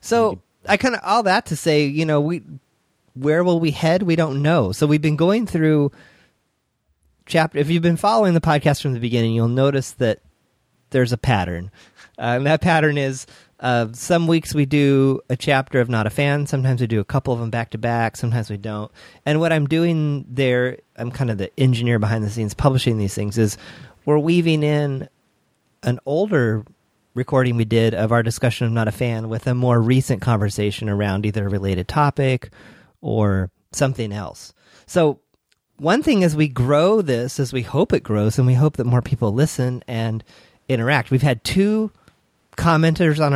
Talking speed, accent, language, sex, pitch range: 190 wpm, American, English, male, 115-150 Hz